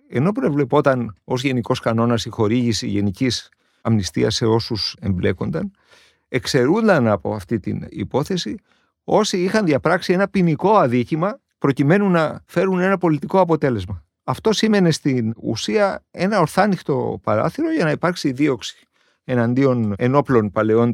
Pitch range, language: 110-160 Hz, Greek